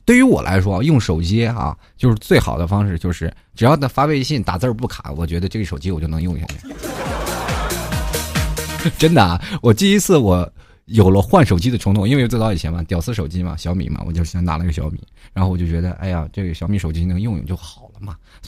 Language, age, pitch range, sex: Chinese, 20-39, 90-125 Hz, male